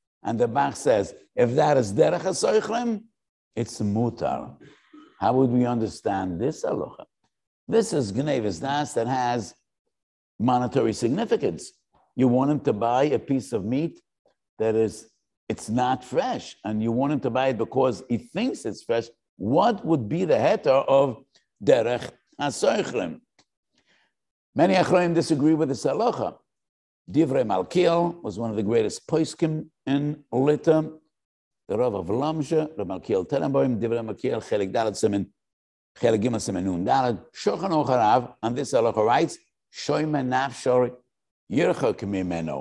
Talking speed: 135 wpm